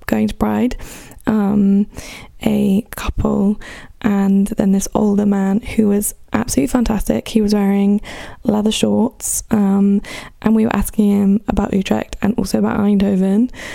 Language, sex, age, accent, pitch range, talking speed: English, female, 10-29, British, 205-235 Hz, 140 wpm